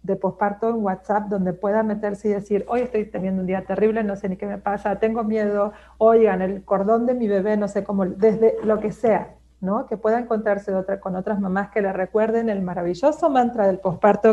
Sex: female